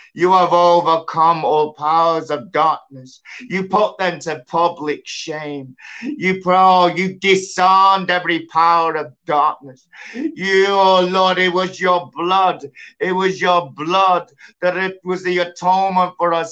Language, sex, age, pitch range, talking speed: English, male, 50-69, 185-225 Hz, 140 wpm